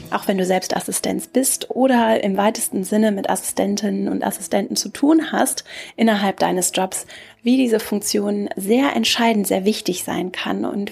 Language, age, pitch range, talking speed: German, 30-49, 200-230 Hz, 165 wpm